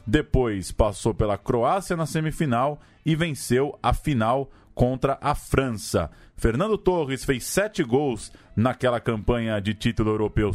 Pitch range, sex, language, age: 105-145 Hz, male, Portuguese, 20-39